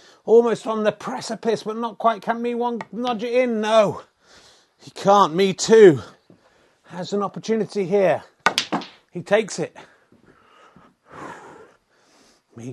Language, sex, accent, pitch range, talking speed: English, male, British, 165-220 Hz, 125 wpm